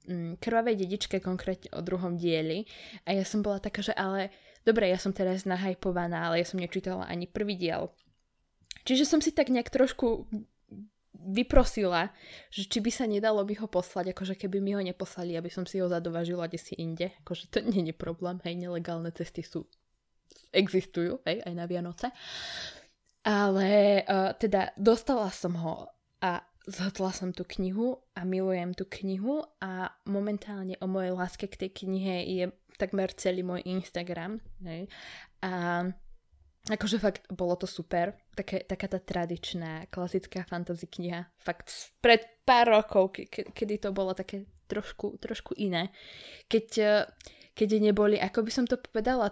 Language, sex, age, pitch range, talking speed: Slovak, female, 20-39, 180-215 Hz, 160 wpm